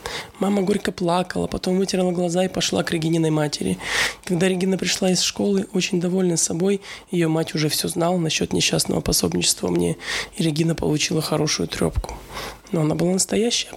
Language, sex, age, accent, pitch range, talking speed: Russian, male, 20-39, native, 155-185 Hz, 160 wpm